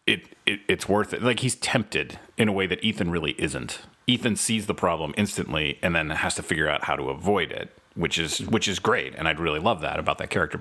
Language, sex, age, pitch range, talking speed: English, male, 30-49, 85-105 Hz, 245 wpm